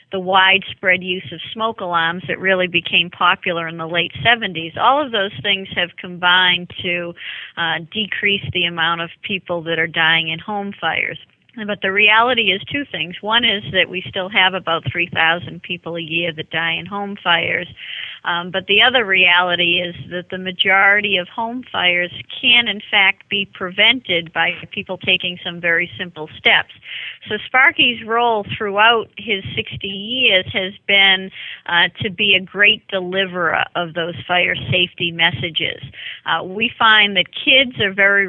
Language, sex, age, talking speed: English, female, 40-59, 170 wpm